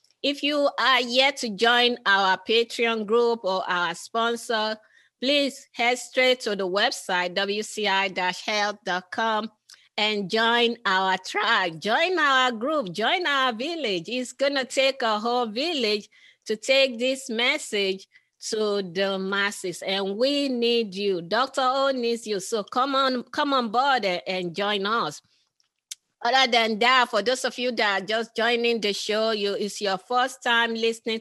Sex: female